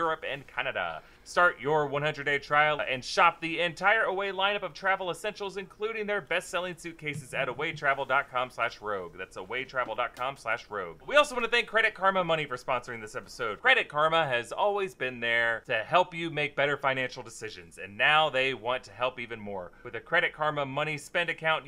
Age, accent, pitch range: 30-49, American, 140-190 Hz